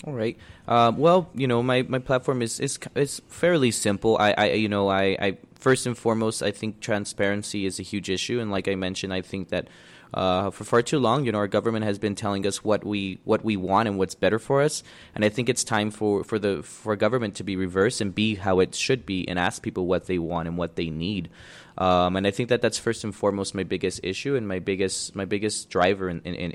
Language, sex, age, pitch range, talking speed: English, male, 20-39, 95-120 Hz, 245 wpm